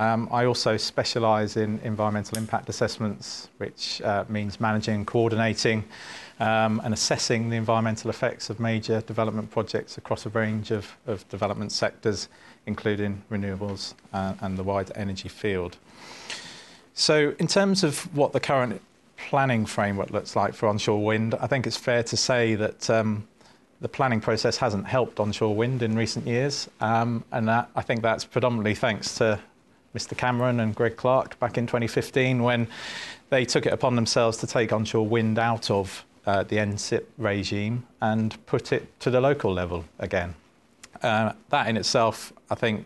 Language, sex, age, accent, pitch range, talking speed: English, male, 30-49, British, 105-120 Hz, 160 wpm